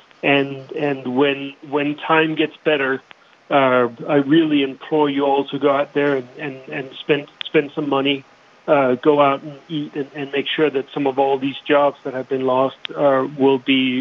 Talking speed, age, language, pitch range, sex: 195 wpm, 40-59, English, 130-145 Hz, male